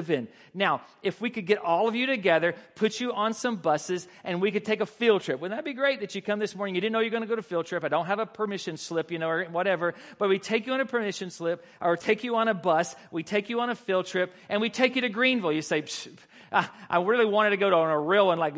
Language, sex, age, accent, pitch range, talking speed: English, male, 40-59, American, 175-225 Hz, 295 wpm